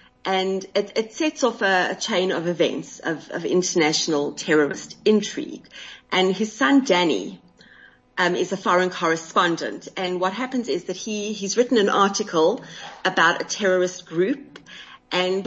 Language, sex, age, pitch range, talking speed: English, female, 30-49, 160-190 Hz, 150 wpm